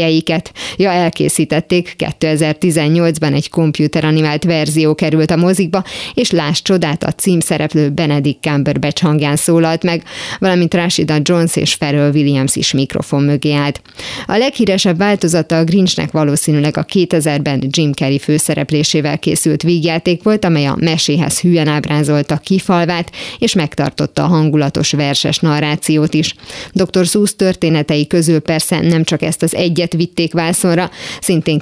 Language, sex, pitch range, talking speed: Hungarian, female, 150-175 Hz, 130 wpm